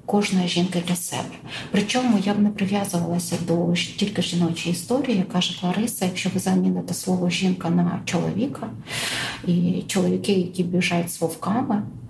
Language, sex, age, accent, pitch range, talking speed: Ukrainian, female, 40-59, native, 175-205 Hz, 135 wpm